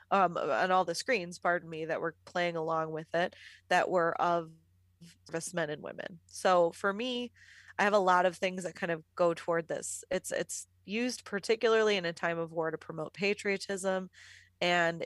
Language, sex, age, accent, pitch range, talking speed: English, female, 20-39, American, 160-190 Hz, 185 wpm